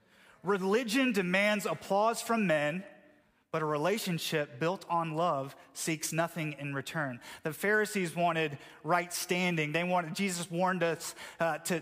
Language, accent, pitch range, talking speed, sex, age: English, American, 145-180 Hz, 135 wpm, male, 30-49